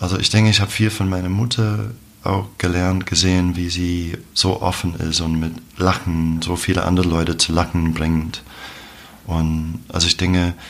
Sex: male